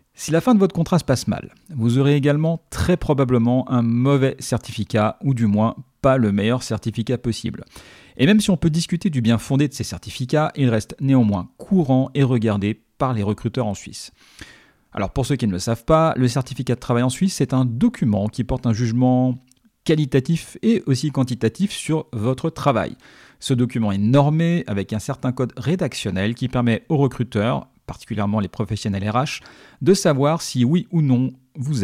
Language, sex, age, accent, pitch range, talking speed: French, male, 40-59, French, 110-145 Hz, 190 wpm